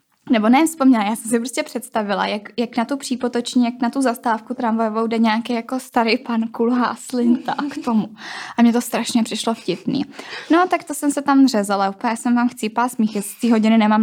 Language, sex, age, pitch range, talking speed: Czech, female, 10-29, 200-245 Hz, 205 wpm